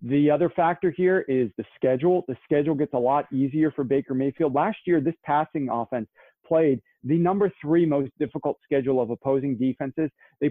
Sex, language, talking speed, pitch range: male, English, 185 wpm, 125-155 Hz